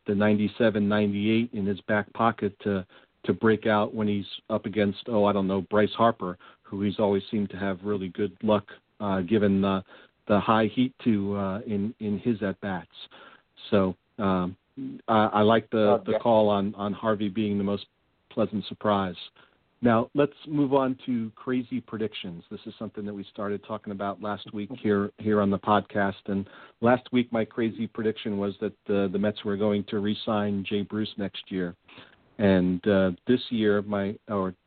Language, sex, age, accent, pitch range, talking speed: English, male, 40-59, American, 100-110 Hz, 180 wpm